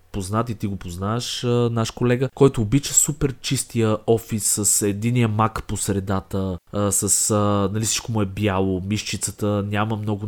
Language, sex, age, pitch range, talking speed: Bulgarian, male, 20-39, 105-125 Hz, 150 wpm